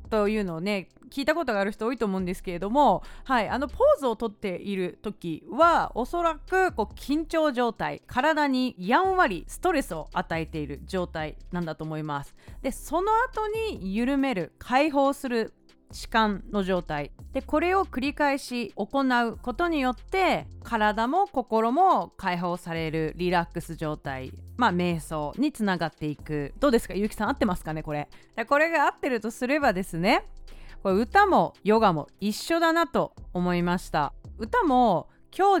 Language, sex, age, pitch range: Japanese, female, 30-49, 180-290 Hz